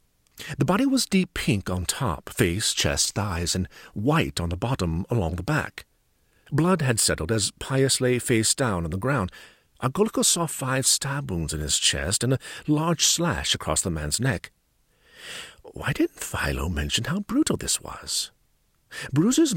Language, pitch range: English, 95-150 Hz